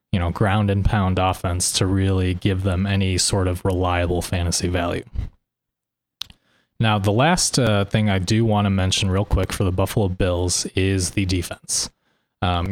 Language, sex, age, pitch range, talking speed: English, male, 20-39, 95-110 Hz, 170 wpm